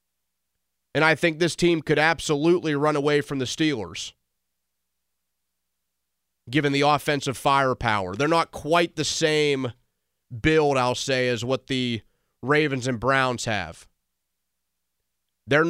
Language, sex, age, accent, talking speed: English, male, 30-49, American, 120 wpm